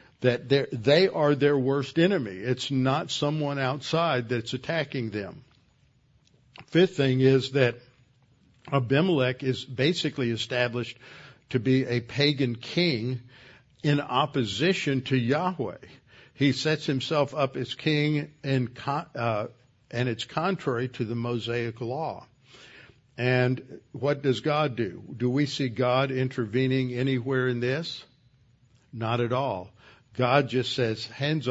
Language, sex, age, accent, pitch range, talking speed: English, male, 60-79, American, 120-140 Hz, 120 wpm